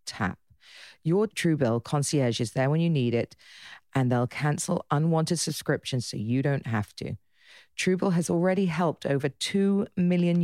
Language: English